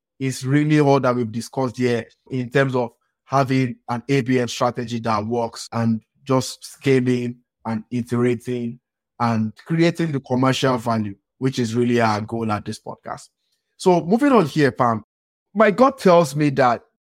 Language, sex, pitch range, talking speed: English, male, 120-145 Hz, 155 wpm